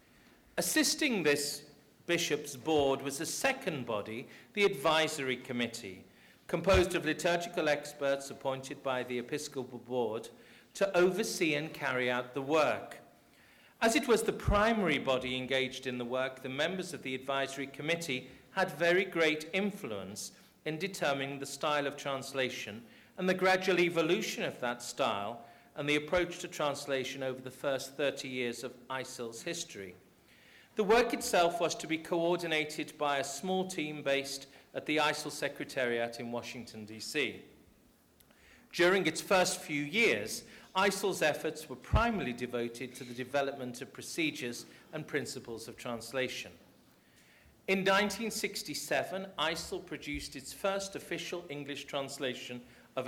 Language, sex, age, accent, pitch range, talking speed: English, male, 50-69, British, 130-170 Hz, 135 wpm